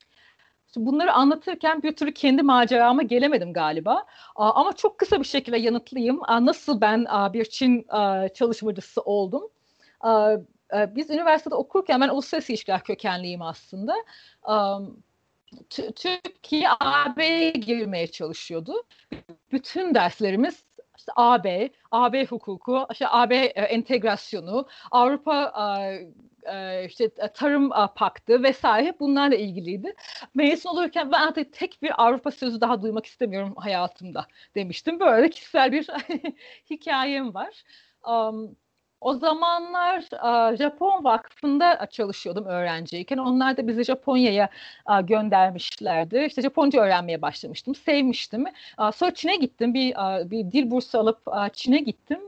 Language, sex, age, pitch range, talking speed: Turkish, female, 40-59, 215-310 Hz, 105 wpm